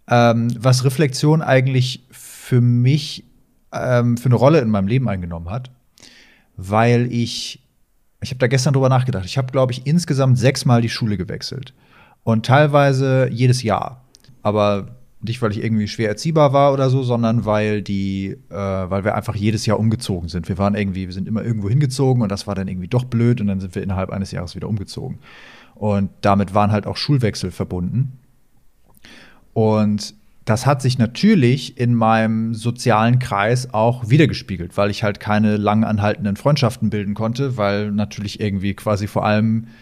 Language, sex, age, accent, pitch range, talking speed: German, male, 30-49, German, 105-130 Hz, 170 wpm